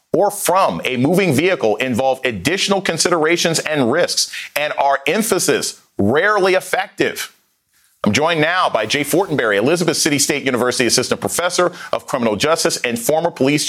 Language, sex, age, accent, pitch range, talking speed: English, male, 40-59, American, 125-160 Hz, 145 wpm